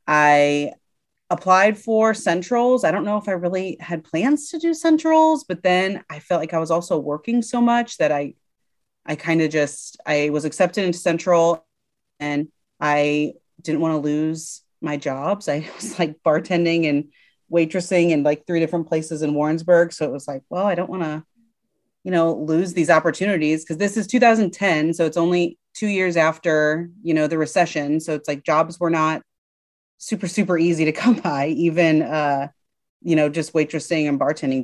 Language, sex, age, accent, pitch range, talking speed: English, female, 30-49, American, 145-175 Hz, 185 wpm